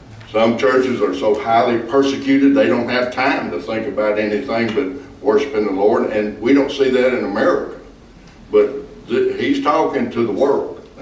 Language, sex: English, male